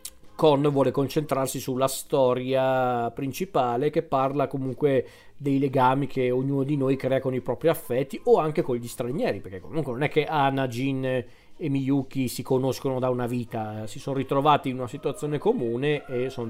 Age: 40-59